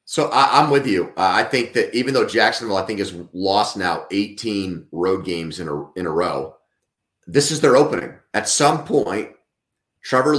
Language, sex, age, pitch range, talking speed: English, male, 30-49, 105-125 Hz, 180 wpm